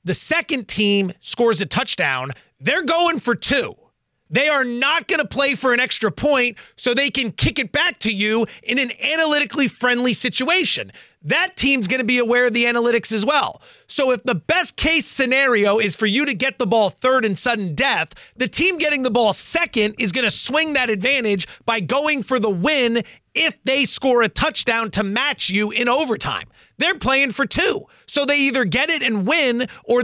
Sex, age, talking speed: male, 30-49, 200 wpm